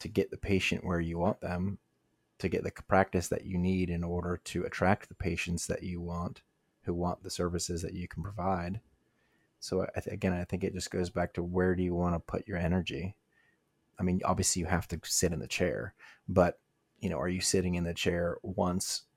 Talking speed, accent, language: 220 wpm, American, English